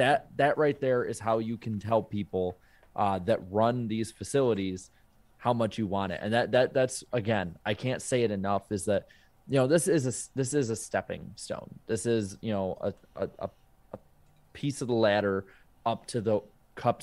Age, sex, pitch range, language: 20-39, male, 100-130 Hz, English